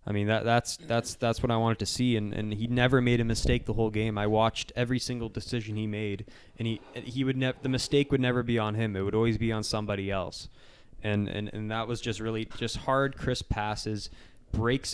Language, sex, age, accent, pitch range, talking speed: English, male, 20-39, American, 100-115 Hz, 235 wpm